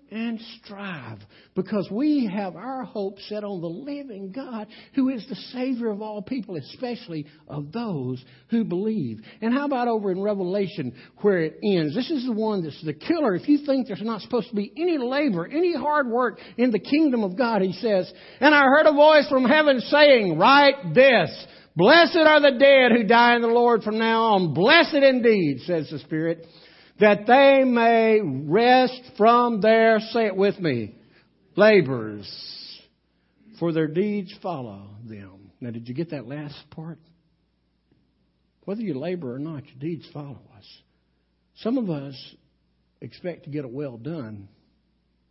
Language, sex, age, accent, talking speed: English, male, 60-79, American, 170 wpm